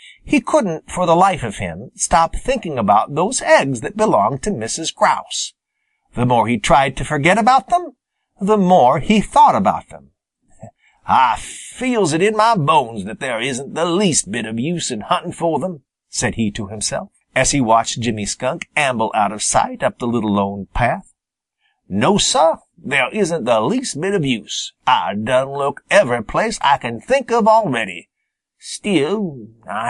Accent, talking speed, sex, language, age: American, 175 wpm, male, English, 50-69